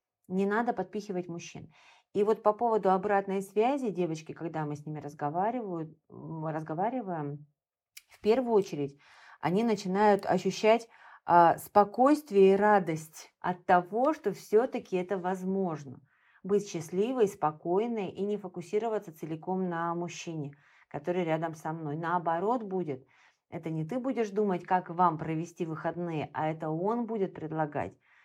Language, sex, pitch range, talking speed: Russian, female, 160-205 Hz, 125 wpm